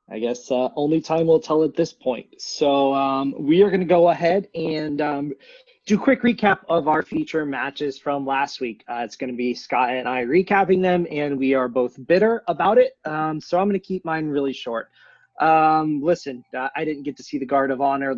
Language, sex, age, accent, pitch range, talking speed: English, male, 20-39, American, 130-165 Hz, 225 wpm